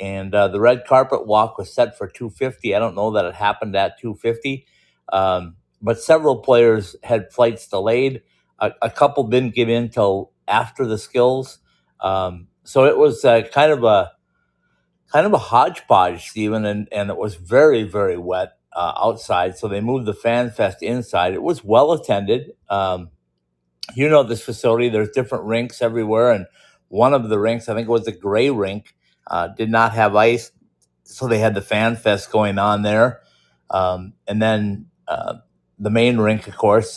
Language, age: English, 50-69